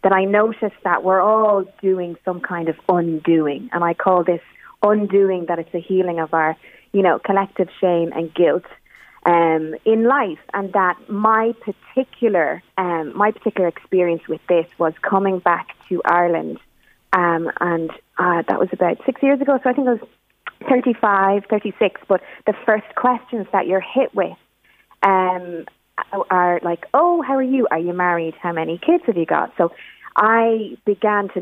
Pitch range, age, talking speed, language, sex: 175-220 Hz, 30-49, 170 wpm, English, female